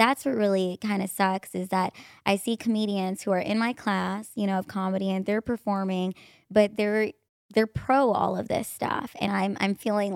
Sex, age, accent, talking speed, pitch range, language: male, 20-39, American, 205 wpm, 210-275 Hz, English